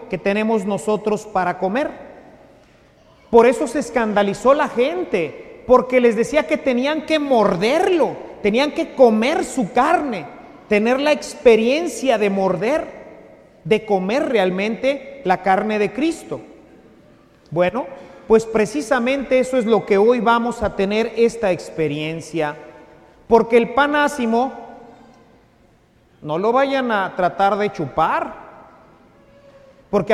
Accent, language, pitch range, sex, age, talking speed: Mexican, English, 200-275 Hz, male, 40-59, 120 wpm